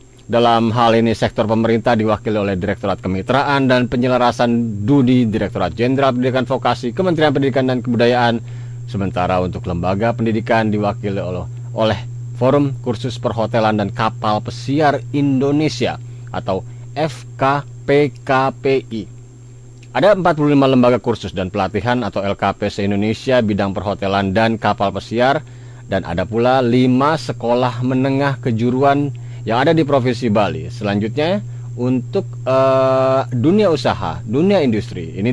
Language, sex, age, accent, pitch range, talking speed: Indonesian, male, 40-59, native, 110-130 Hz, 115 wpm